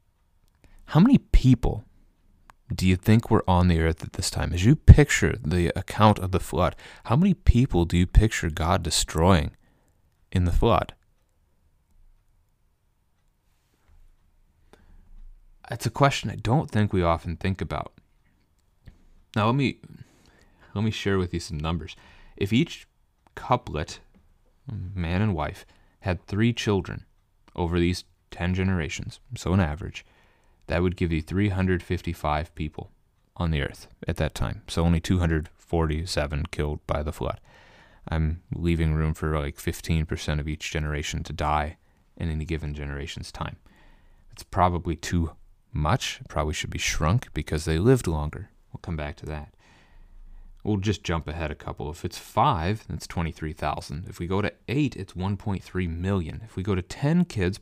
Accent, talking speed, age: American, 150 wpm, 30-49